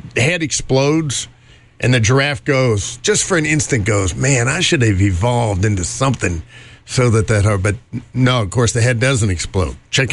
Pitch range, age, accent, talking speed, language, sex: 105-130 Hz, 50-69, American, 180 wpm, English, male